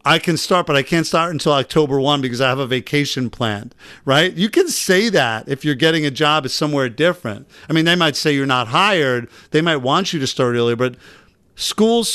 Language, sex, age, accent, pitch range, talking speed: English, male, 50-69, American, 150-200 Hz, 225 wpm